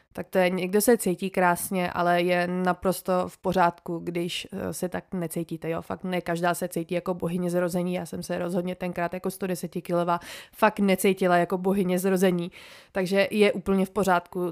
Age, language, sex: 20-39, Czech, female